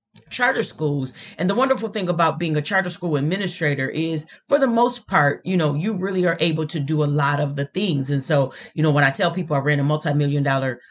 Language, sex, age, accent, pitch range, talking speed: English, female, 30-49, American, 150-200 Hz, 230 wpm